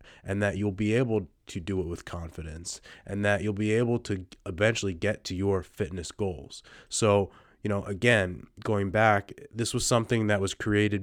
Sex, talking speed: male, 185 wpm